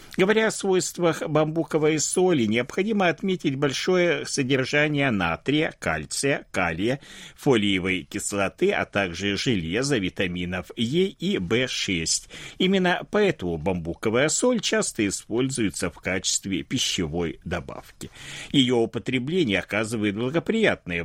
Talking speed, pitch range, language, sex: 100 wpm, 95-155 Hz, Russian, male